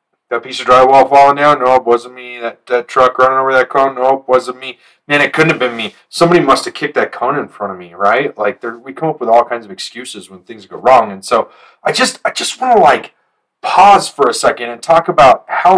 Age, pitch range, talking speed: 30-49, 120-155 Hz, 260 wpm